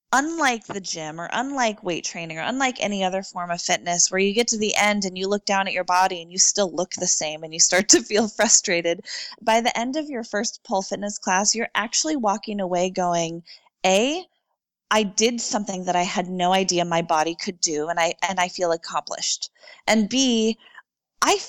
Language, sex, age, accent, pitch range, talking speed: English, female, 20-39, American, 180-230 Hz, 205 wpm